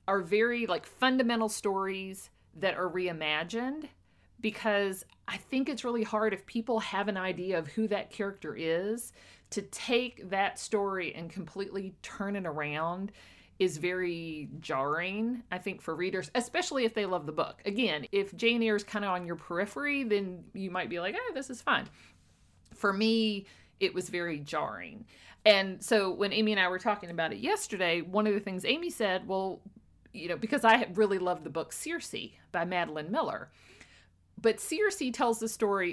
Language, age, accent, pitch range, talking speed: English, 50-69, American, 180-230 Hz, 175 wpm